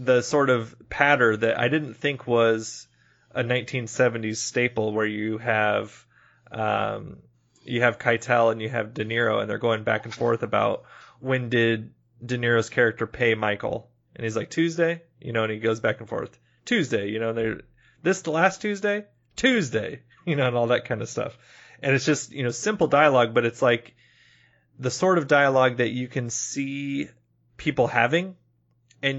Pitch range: 115-140 Hz